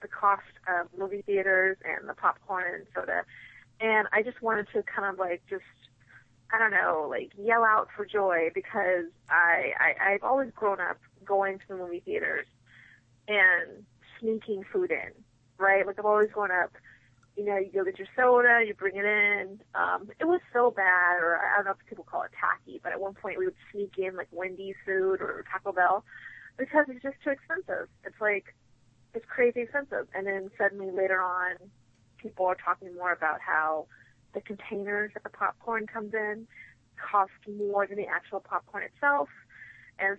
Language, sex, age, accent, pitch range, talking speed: English, female, 20-39, American, 185-215 Hz, 185 wpm